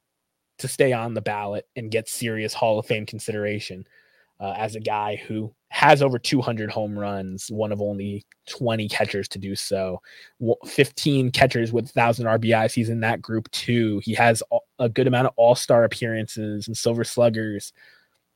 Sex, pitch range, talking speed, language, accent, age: male, 105-135 Hz, 170 wpm, English, American, 20-39